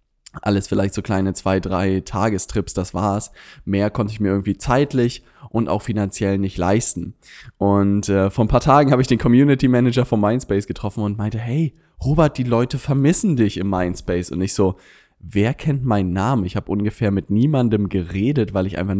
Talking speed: 185 wpm